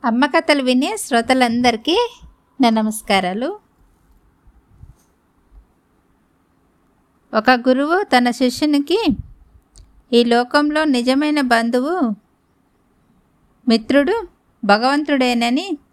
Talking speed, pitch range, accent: 55 wpm, 215-265 Hz, native